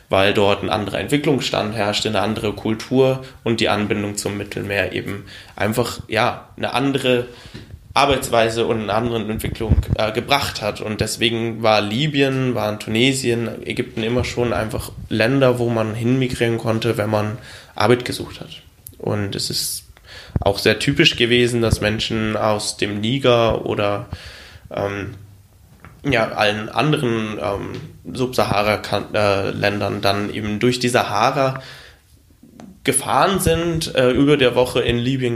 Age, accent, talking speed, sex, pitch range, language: 20-39, German, 135 wpm, male, 105-125 Hz, German